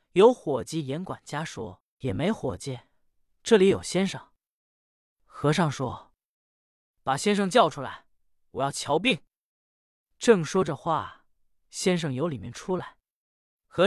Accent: native